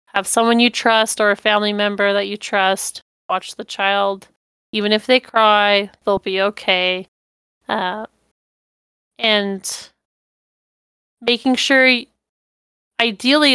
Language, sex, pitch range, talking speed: English, female, 205-230 Hz, 115 wpm